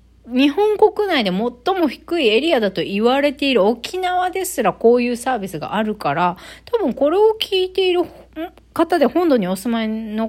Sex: female